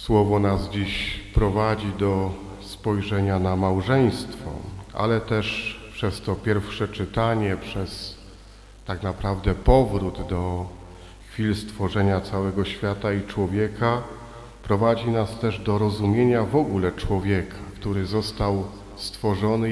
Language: Polish